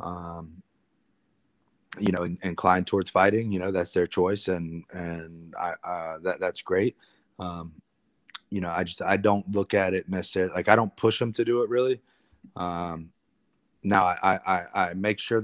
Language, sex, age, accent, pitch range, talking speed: English, male, 30-49, American, 85-95 Hz, 175 wpm